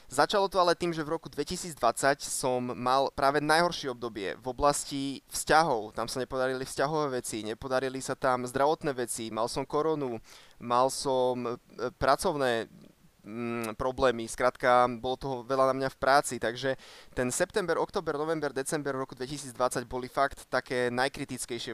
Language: Slovak